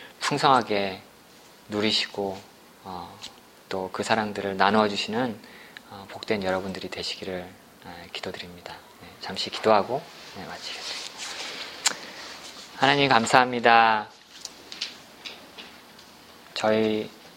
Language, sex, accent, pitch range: Korean, male, native, 105-120 Hz